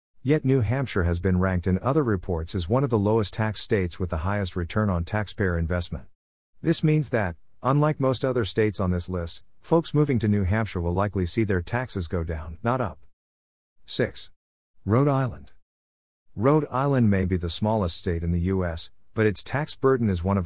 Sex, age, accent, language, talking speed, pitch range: male, 50-69, American, English, 195 wpm, 85-115 Hz